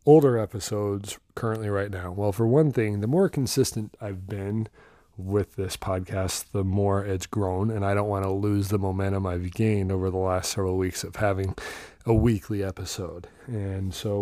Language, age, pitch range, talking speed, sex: English, 30-49, 95-110 Hz, 180 wpm, male